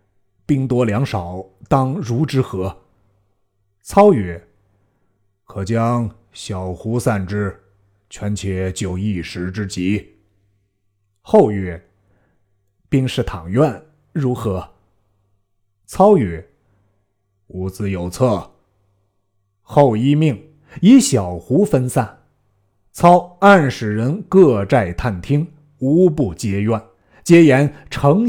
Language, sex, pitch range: Chinese, male, 100-130 Hz